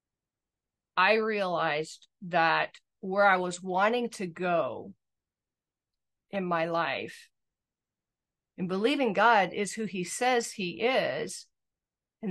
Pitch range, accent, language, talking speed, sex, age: 175-220 Hz, American, English, 105 wpm, female, 50-69